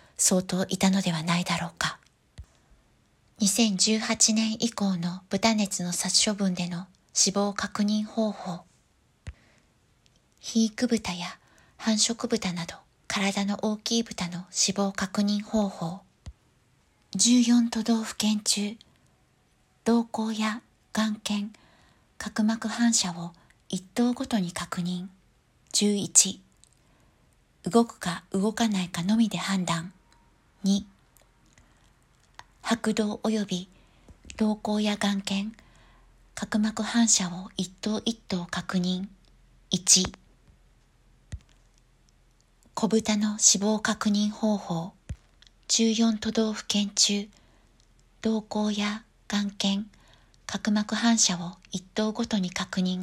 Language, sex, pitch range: Japanese, female, 185-220 Hz